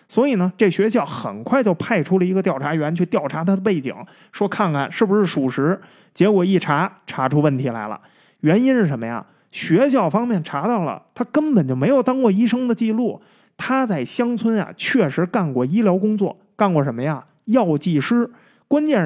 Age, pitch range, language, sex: 20-39, 155-240 Hz, Chinese, male